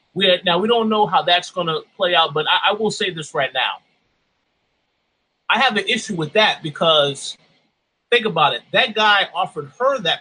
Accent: American